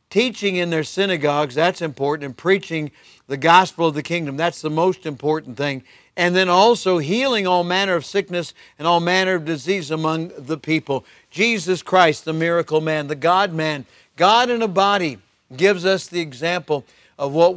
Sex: male